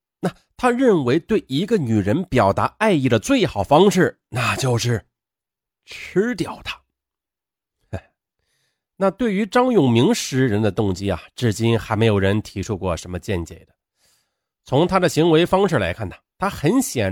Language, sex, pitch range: Chinese, male, 100-165 Hz